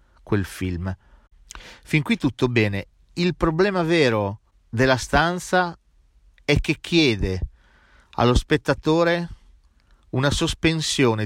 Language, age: Italian, 40-59